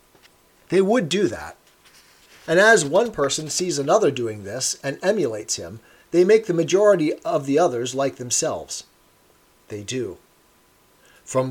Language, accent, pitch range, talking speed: English, American, 140-185 Hz, 140 wpm